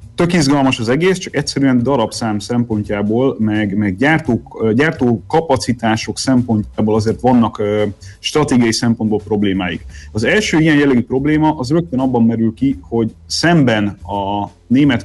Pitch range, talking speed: 105-135 Hz, 130 wpm